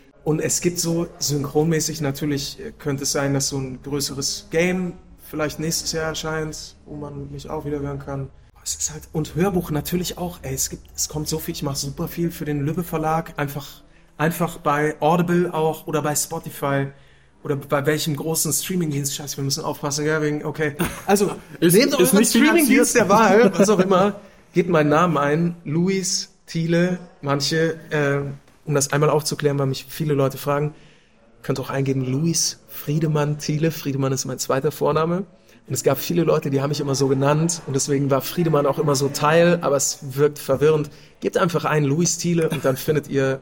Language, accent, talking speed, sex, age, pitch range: German, German, 190 wpm, male, 30-49, 145-170 Hz